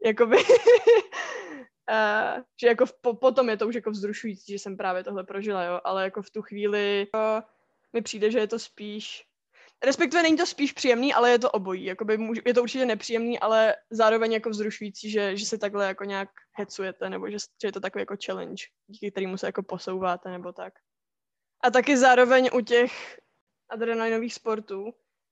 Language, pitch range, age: Czech, 195-235 Hz, 20-39